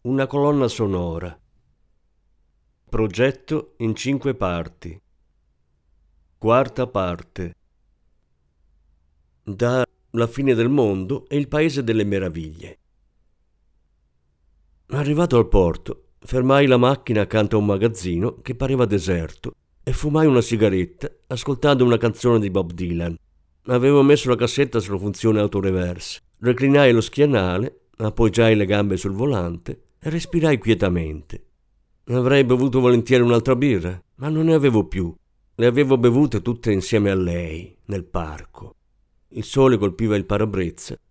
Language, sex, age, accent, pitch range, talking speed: Italian, male, 50-69, native, 90-130 Hz, 125 wpm